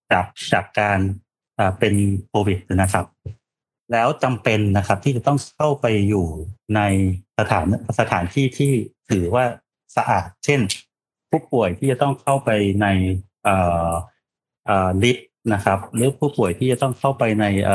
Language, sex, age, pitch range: Thai, male, 30-49, 100-130 Hz